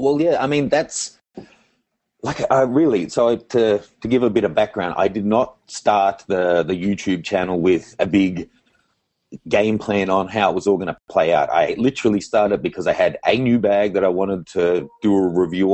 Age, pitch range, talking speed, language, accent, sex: 30-49, 90-110 Hz, 210 wpm, English, Australian, male